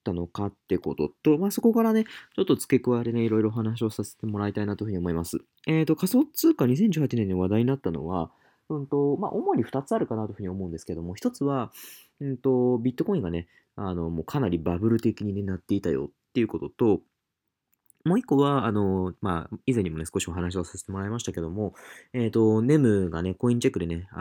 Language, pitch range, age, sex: Japanese, 95-135 Hz, 20-39, male